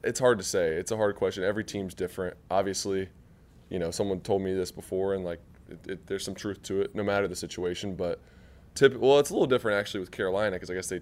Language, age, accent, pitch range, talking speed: English, 20-39, American, 90-100 Hz, 250 wpm